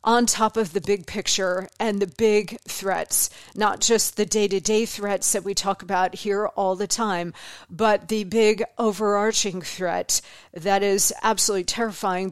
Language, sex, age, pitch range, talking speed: English, female, 40-59, 195-250 Hz, 155 wpm